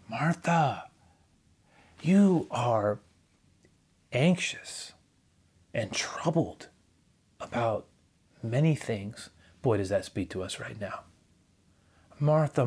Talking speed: 85 wpm